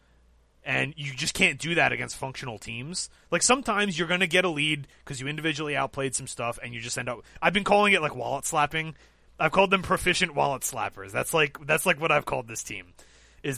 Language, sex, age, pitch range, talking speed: English, male, 30-49, 110-170 Hz, 225 wpm